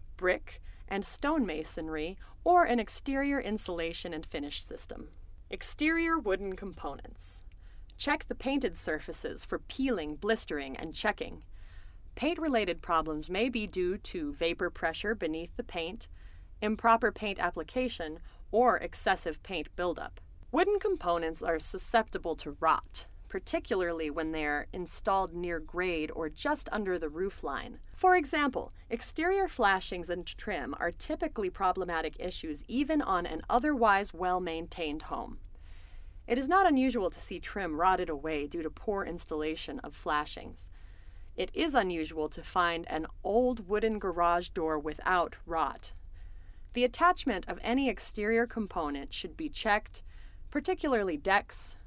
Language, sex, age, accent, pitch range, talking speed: English, female, 30-49, American, 155-230 Hz, 130 wpm